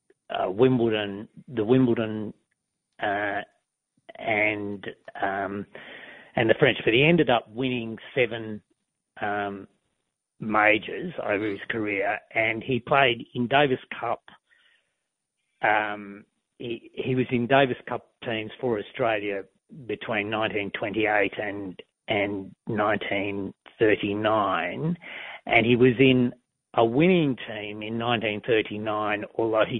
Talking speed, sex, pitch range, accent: 115 wpm, male, 100-125 Hz, Australian